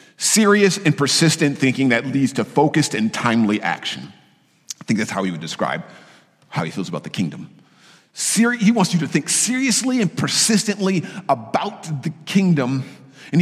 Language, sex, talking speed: English, male, 165 wpm